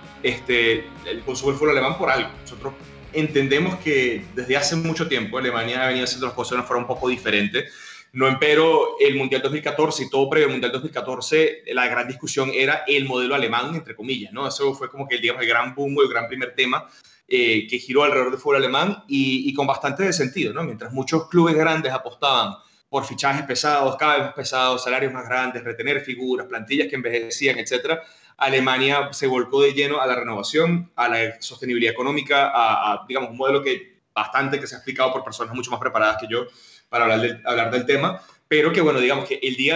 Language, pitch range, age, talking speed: Spanish, 125-155 Hz, 30-49, 205 wpm